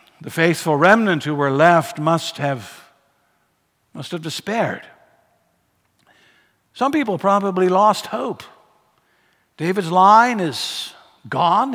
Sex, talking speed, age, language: male, 100 wpm, 60-79, English